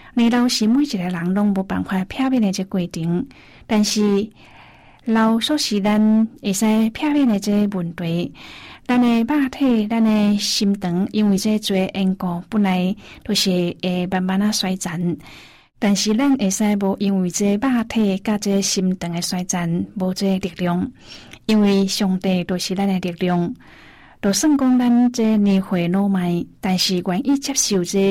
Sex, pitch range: female, 185-215 Hz